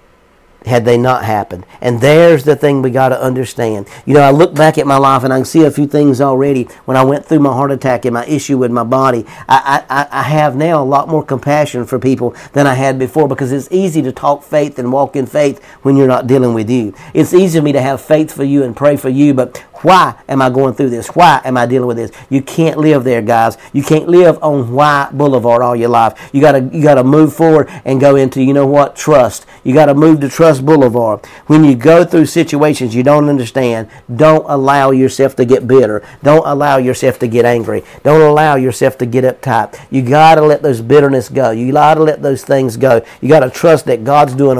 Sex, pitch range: male, 125-150 Hz